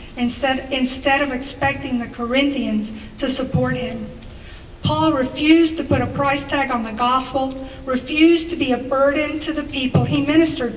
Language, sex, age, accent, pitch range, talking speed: English, female, 50-69, American, 245-285 Hz, 160 wpm